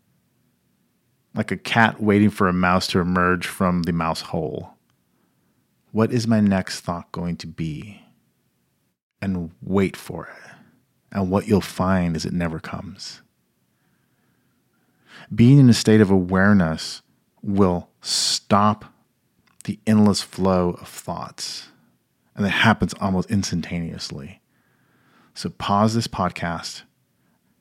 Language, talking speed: English, 120 wpm